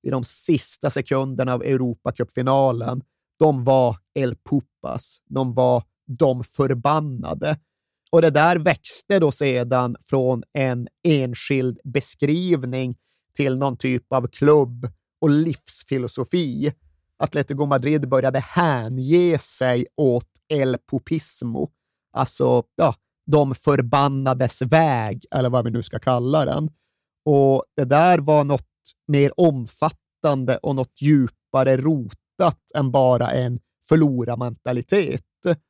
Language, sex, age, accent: Swedish, male, 30-49, native